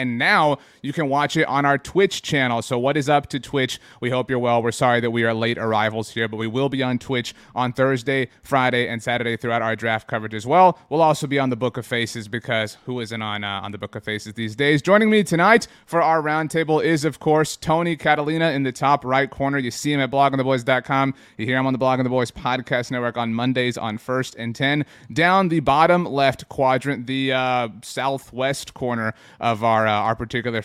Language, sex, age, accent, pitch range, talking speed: English, male, 30-49, American, 120-145 Hz, 230 wpm